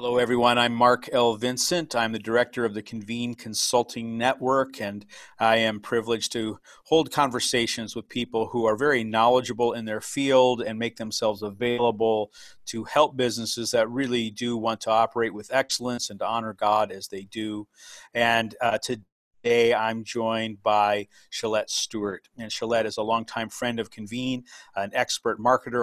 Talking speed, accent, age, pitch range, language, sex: 165 wpm, American, 40-59, 110-125 Hz, English, male